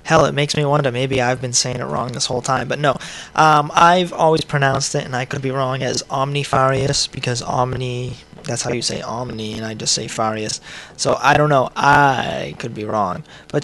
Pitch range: 125-145 Hz